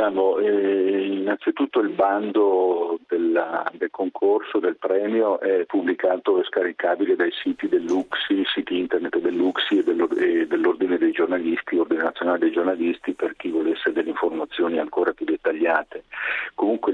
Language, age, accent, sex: Italian, 50-69, native, male